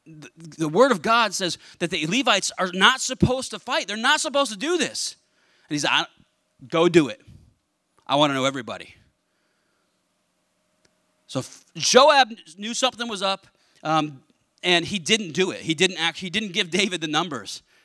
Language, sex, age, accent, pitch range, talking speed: English, male, 30-49, American, 155-225 Hz, 170 wpm